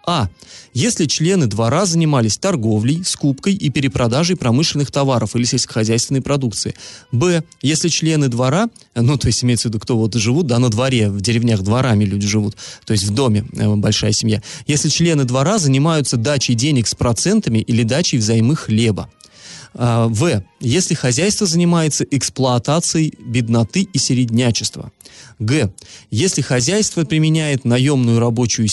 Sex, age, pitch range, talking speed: male, 30-49, 115-145 Hz, 140 wpm